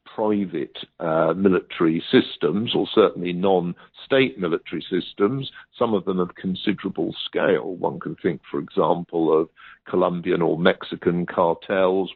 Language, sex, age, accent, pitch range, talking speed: English, male, 50-69, British, 90-110 Hz, 125 wpm